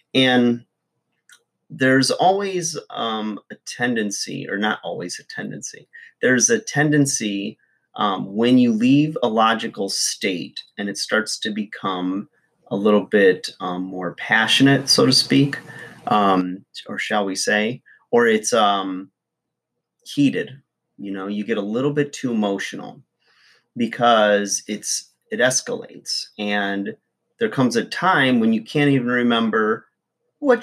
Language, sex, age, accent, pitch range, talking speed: English, male, 30-49, American, 105-160 Hz, 135 wpm